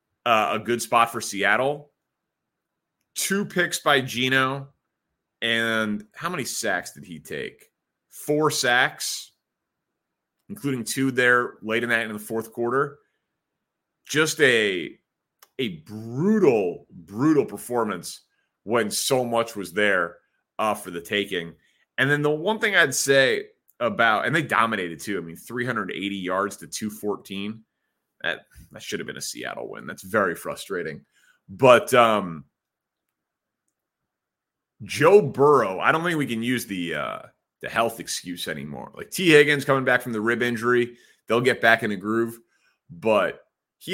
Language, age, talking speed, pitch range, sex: English, 30-49, 140 wpm, 110-145 Hz, male